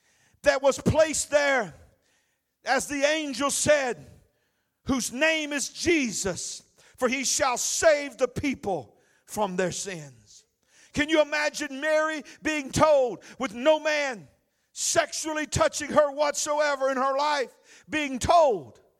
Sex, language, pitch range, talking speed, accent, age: male, English, 255-295 Hz, 125 wpm, American, 50-69